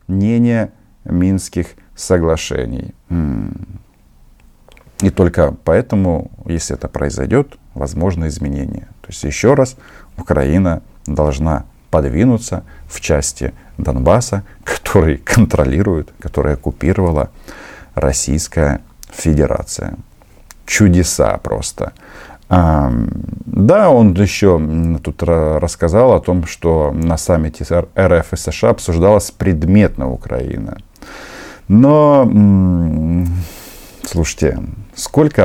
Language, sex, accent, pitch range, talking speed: Russian, male, native, 75-95 Hz, 80 wpm